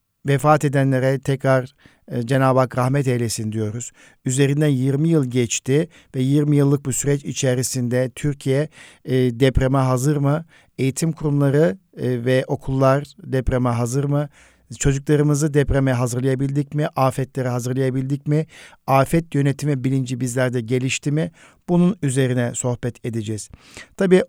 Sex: male